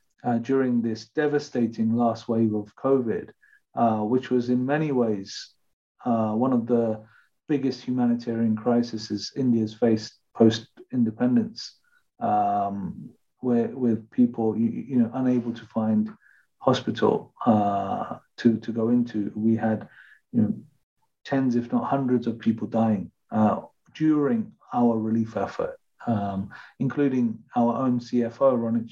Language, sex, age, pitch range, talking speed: English, male, 40-59, 110-130 Hz, 130 wpm